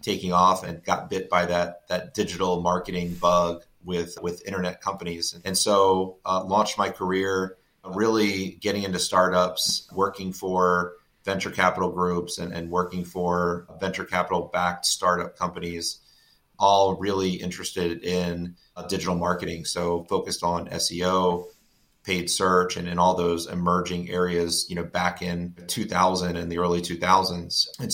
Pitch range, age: 85-95 Hz, 30-49